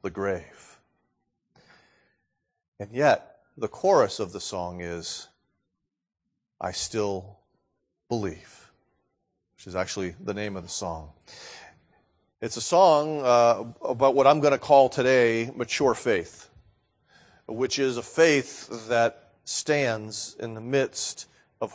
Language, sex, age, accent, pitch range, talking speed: English, male, 40-59, American, 125-170 Hz, 120 wpm